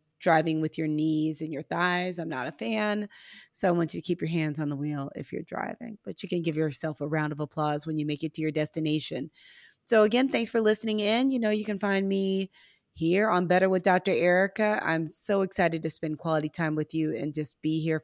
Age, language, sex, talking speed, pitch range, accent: 30-49, English, female, 240 wpm, 160-215 Hz, American